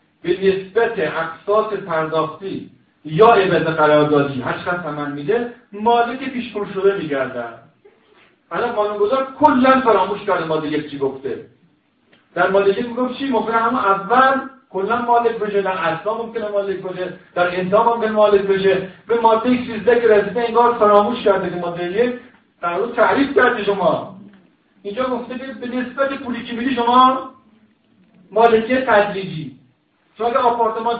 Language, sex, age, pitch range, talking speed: Persian, male, 50-69, 185-235 Hz, 135 wpm